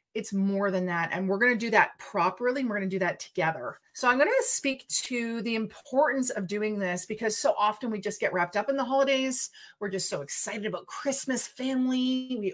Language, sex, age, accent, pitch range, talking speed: English, female, 30-49, American, 200-270 Hz, 230 wpm